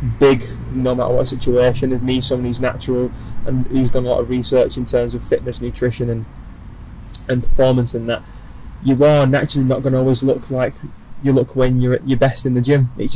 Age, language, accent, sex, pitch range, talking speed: 20-39, English, British, male, 120-135 Hz, 215 wpm